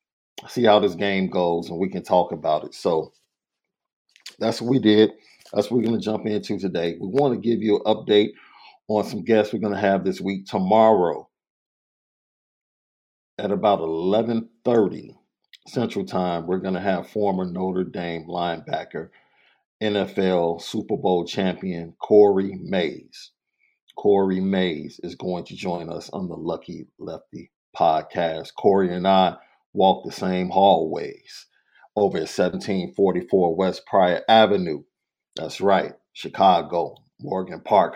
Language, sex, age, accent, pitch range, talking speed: English, male, 50-69, American, 90-105 Hz, 140 wpm